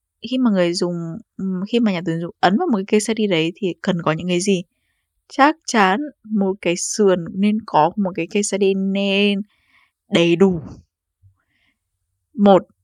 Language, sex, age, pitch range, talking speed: Vietnamese, female, 20-39, 170-220 Hz, 175 wpm